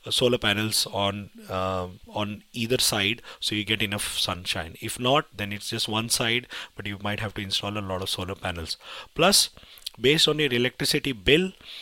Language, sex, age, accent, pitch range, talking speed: English, male, 30-49, Indian, 100-115 Hz, 185 wpm